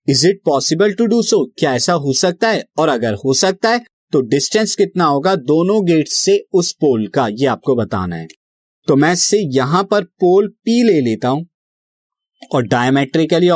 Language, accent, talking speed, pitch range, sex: Hindi, native, 180 wpm, 130-185 Hz, male